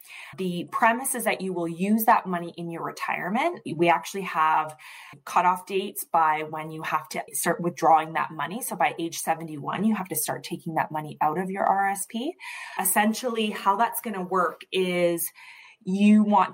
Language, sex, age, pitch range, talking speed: English, female, 20-39, 170-215 Hz, 180 wpm